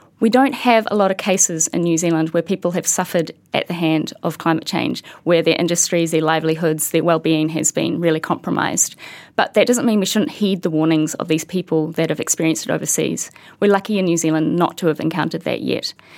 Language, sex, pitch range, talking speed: English, female, 165-200 Hz, 220 wpm